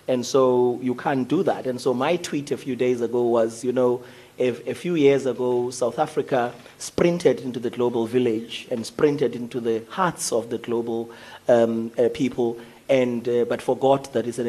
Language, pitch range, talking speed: English, 120-135 Hz, 195 wpm